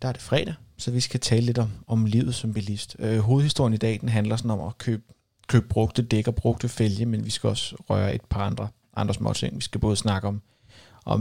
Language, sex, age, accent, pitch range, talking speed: Danish, male, 30-49, native, 110-125 Hz, 245 wpm